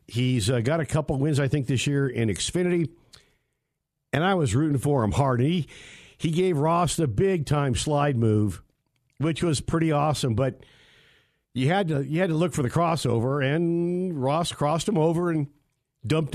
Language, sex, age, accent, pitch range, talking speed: English, male, 50-69, American, 130-160 Hz, 175 wpm